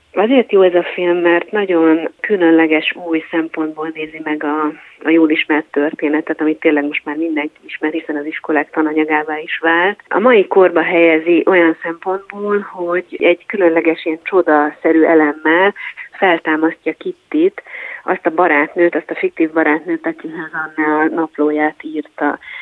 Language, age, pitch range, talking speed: Hungarian, 30-49, 155-190 Hz, 145 wpm